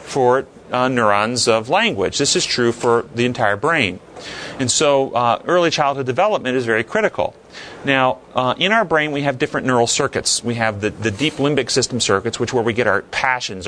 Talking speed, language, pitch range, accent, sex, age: 195 wpm, English, 120-160 Hz, American, male, 40-59